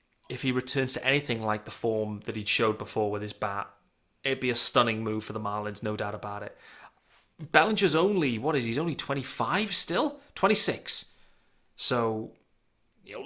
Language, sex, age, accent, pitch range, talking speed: English, male, 30-49, British, 105-150 Hz, 180 wpm